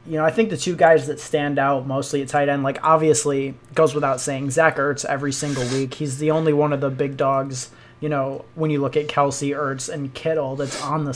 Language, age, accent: English, 20-39, American